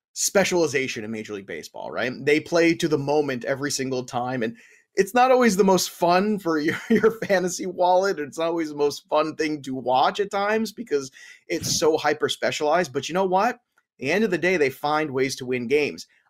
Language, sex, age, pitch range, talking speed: English, male, 30-49, 130-175 Hz, 205 wpm